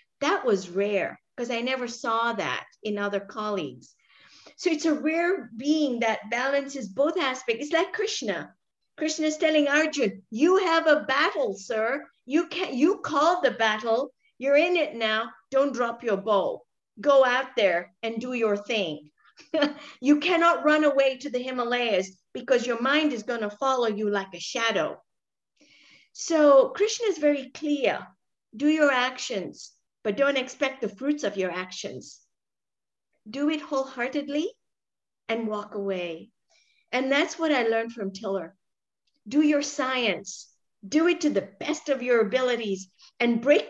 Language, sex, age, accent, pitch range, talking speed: English, female, 50-69, American, 220-295 Hz, 150 wpm